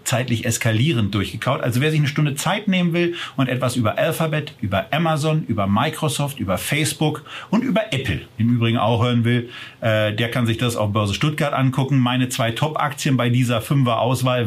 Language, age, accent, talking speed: German, 40-59, German, 180 wpm